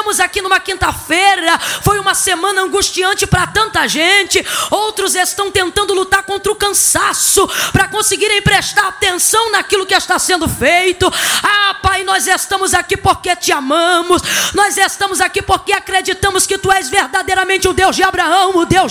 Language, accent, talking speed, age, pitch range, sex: Portuguese, Brazilian, 160 wpm, 20-39, 370-415 Hz, female